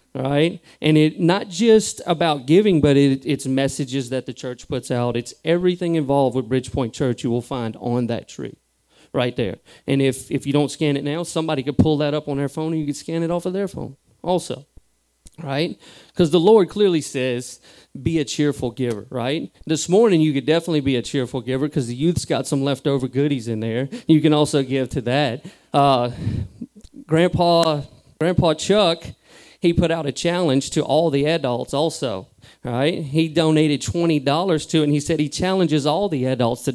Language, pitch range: English, 130-170 Hz